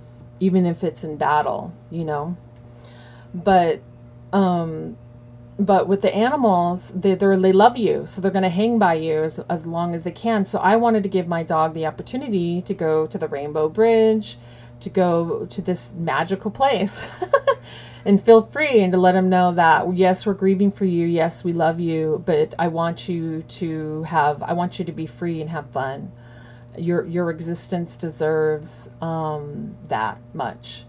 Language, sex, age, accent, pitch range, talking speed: English, female, 40-59, American, 155-190 Hz, 175 wpm